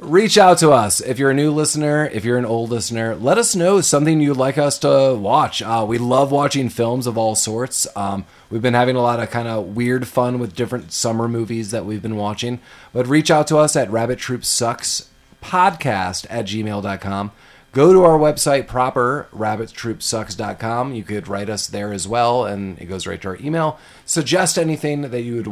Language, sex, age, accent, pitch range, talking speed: English, male, 30-49, American, 105-140 Hz, 200 wpm